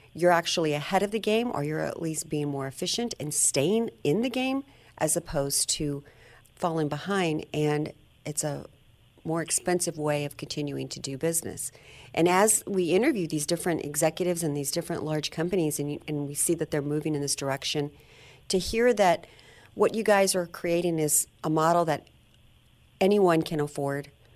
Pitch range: 145-170 Hz